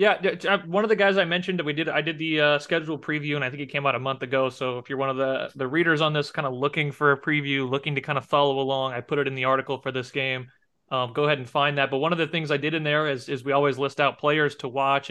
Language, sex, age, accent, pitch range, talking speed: English, male, 30-49, American, 135-160 Hz, 320 wpm